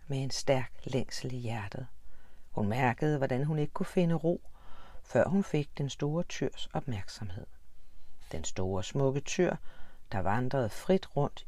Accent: native